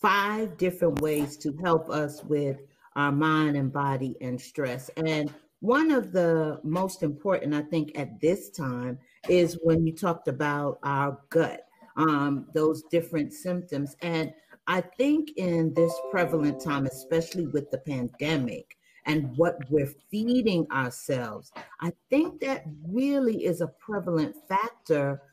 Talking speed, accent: 140 wpm, American